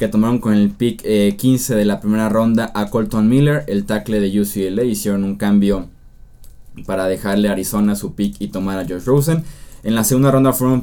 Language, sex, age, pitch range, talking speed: Spanish, male, 20-39, 105-130 Hz, 205 wpm